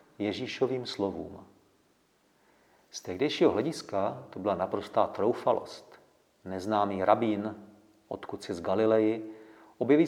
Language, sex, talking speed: Czech, male, 95 wpm